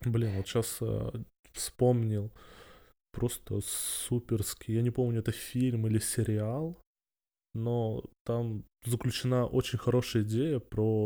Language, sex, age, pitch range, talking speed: Russian, male, 20-39, 105-120 Hz, 115 wpm